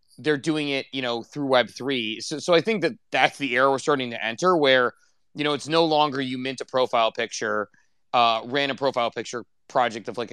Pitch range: 120-155 Hz